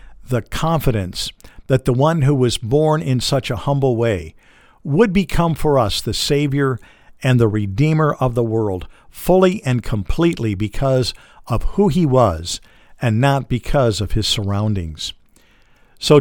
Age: 50-69